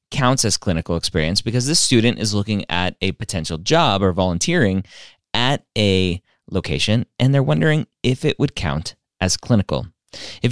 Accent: American